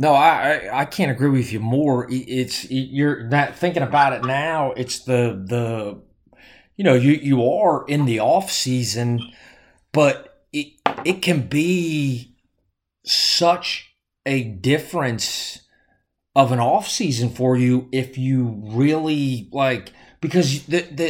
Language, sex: English, male